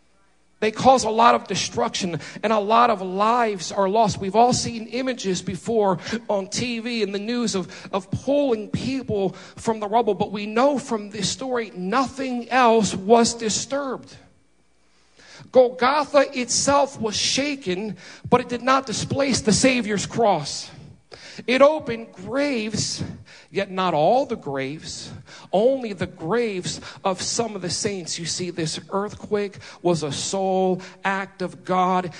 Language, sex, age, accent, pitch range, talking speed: English, male, 40-59, American, 185-230 Hz, 145 wpm